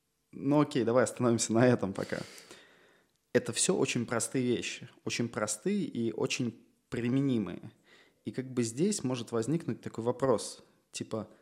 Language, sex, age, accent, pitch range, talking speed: Russian, male, 20-39, native, 115-140 Hz, 135 wpm